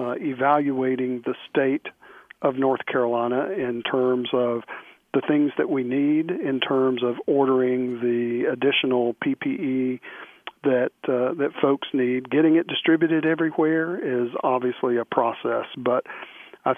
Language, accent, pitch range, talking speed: English, American, 120-140 Hz, 130 wpm